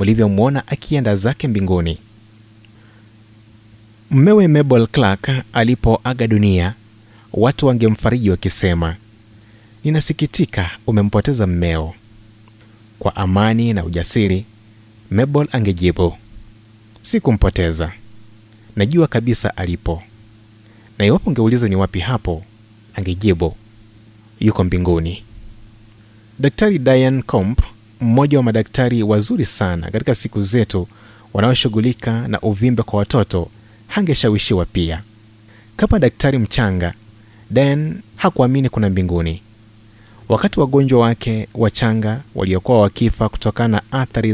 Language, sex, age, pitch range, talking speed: Swahili, male, 30-49, 105-120 Hz, 95 wpm